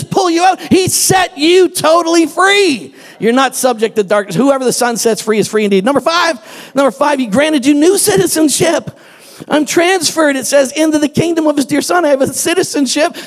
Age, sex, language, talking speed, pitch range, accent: 50-69, male, English, 205 wpm, 230-300 Hz, American